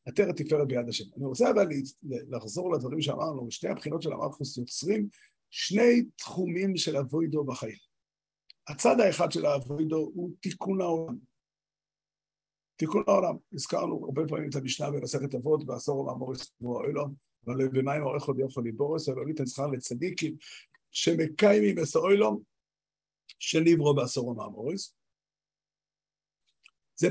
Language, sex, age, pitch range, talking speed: Hebrew, male, 50-69, 140-175 Hz, 120 wpm